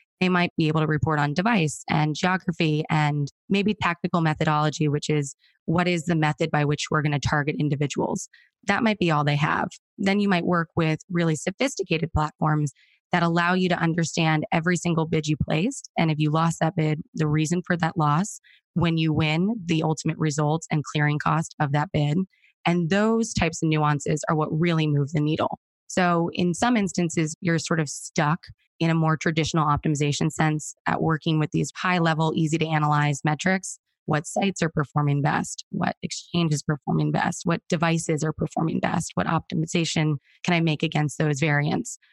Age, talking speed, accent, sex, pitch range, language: 20-39, 185 wpm, American, female, 150-175 Hz, English